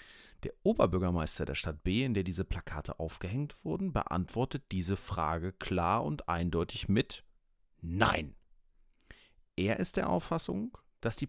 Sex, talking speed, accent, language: male, 135 wpm, German, German